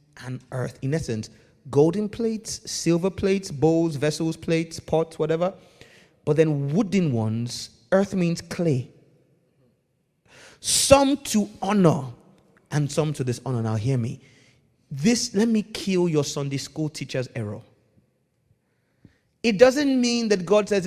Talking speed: 130 wpm